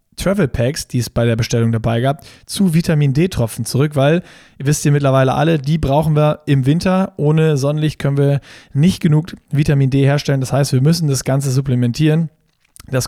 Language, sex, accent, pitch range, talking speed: German, male, German, 135-160 Hz, 180 wpm